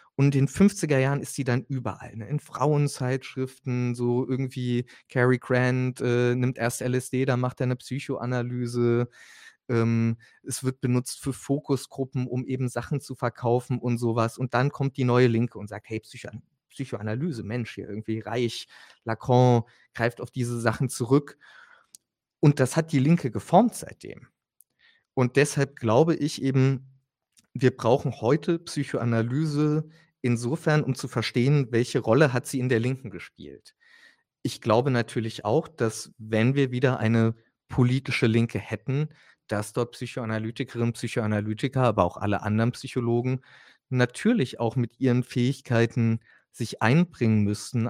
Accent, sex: German, male